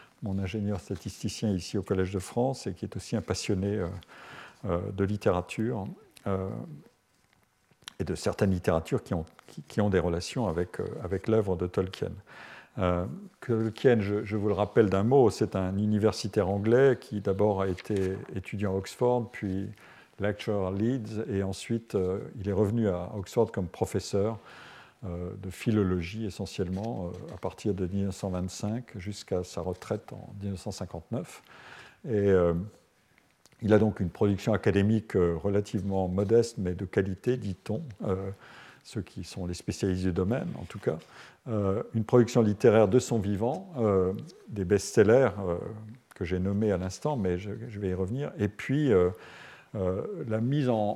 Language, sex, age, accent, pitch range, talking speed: French, male, 50-69, French, 95-110 Hz, 160 wpm